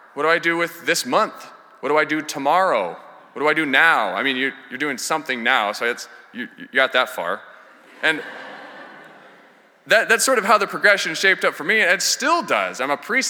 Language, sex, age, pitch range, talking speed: English, male, 20-39, 155-195 Hz, 225 wpm